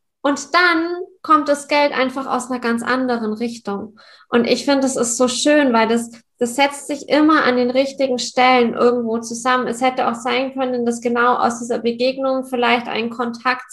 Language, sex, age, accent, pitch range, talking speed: German, female, 20-39, German, 225-265 Hz, 190 wpm